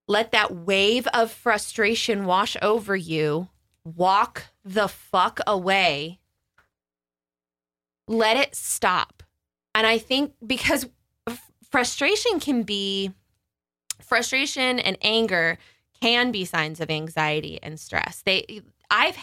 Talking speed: 105 wpm